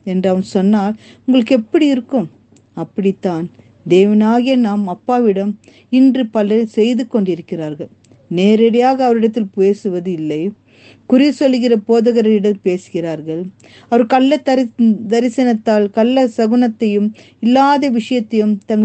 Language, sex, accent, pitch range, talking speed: Tamil, female, native, 190-245 Hz, 90 wpm